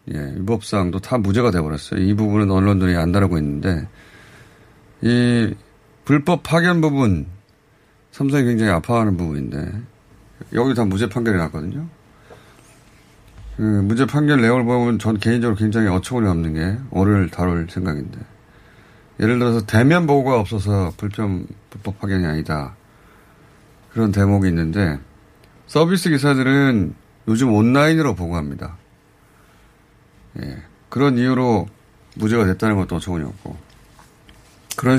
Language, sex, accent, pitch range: Korean, male, native, 95-125 Hz